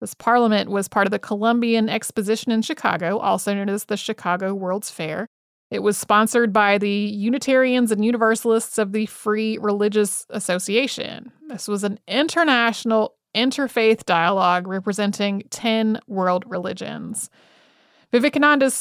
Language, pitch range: English, 205-240 Hz